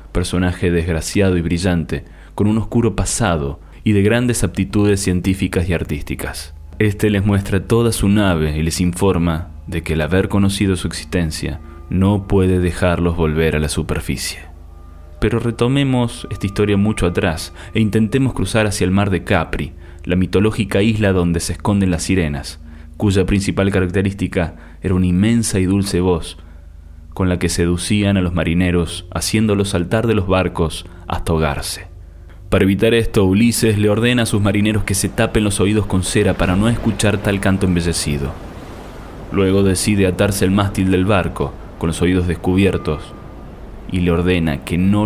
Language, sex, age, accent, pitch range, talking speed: Spanish, male, 20-39, Argentinian, 85-105 Hz, 160 wpm